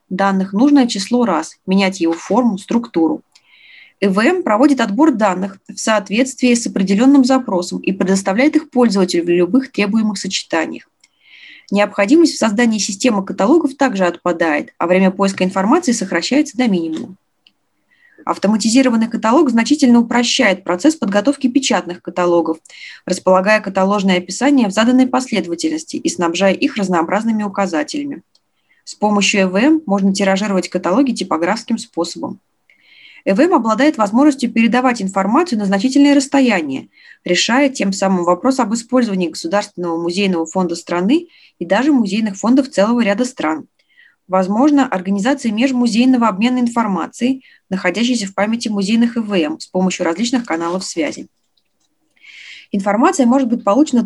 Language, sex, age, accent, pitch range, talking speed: Russian, female, 20-39, native, 190-260 Hz, 120 wpm